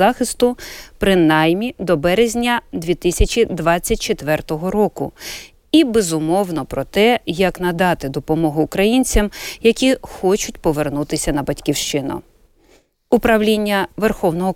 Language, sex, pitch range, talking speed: Ukrainian, female, 155-220 Hz, 80 wpm